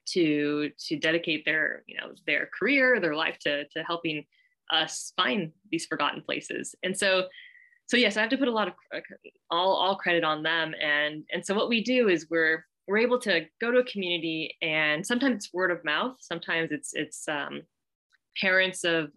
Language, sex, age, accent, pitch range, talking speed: English, female, 20-39, American, 155-190 Hz, 190 wpm